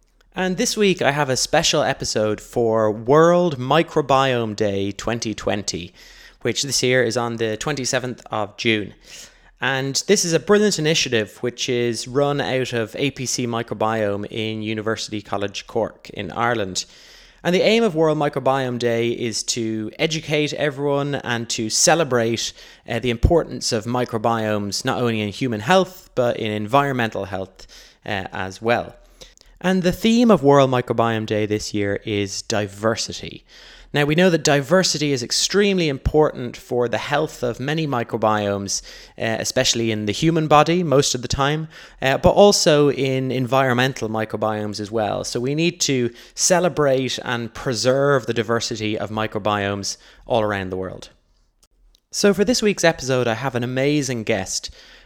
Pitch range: 110-145 Hz